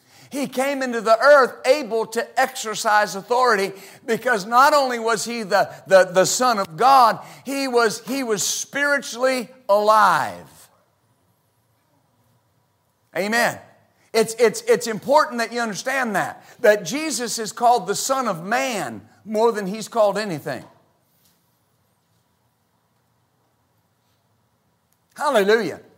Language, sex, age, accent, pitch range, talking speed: English, male, 50-69, American, 210-260 Hz, 110 wpm